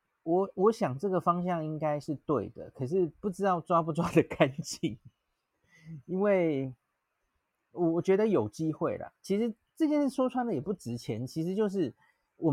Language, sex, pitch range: Chinese, male, 120-170 Hz